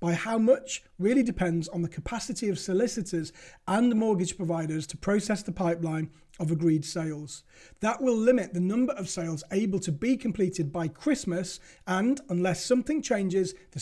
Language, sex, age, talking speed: English, male, 30-49, 170 wpm